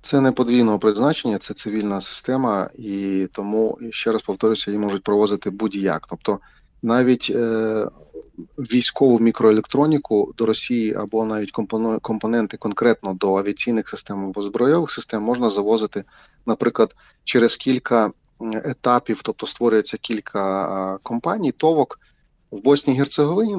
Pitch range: 110-135 Hz